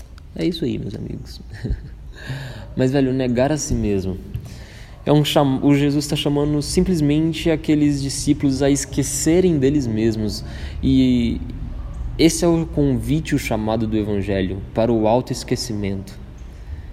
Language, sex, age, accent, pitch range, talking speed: Portuguese, male, 20-39, Brazilian, 105-145 Hz, 135 wpm